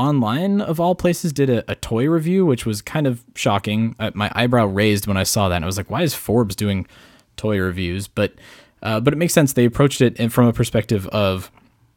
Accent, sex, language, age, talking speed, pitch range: American, male, English, 20-39, 225 wpm, 100-125 Hz